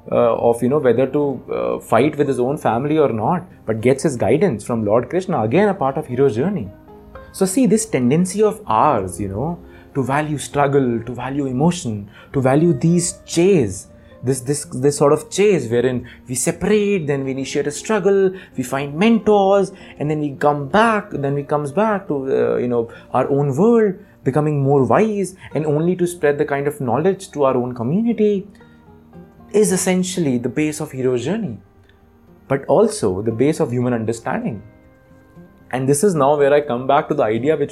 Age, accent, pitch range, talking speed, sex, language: 20-39, native, 120-160 Hz, 190 wpm, male, Hindi